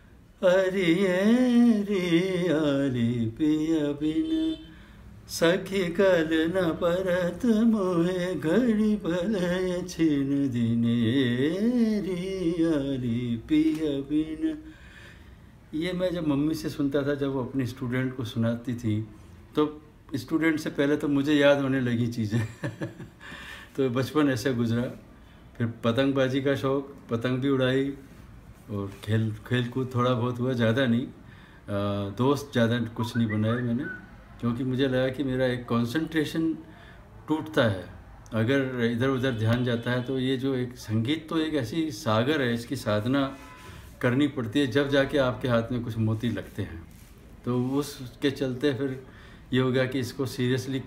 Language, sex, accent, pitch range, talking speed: Hindi, male, native, 115-155 Hz, 140 wpm